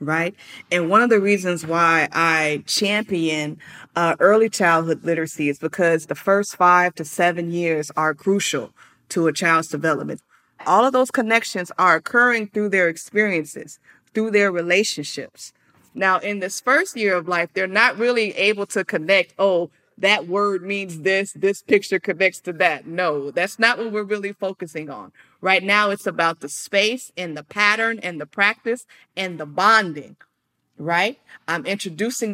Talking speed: 165 wpm